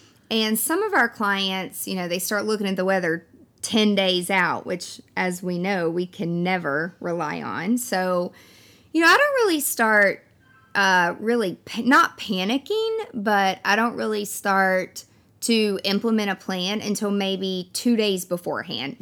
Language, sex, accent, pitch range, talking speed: English, female, American, 175-220 Hz, 160 wpm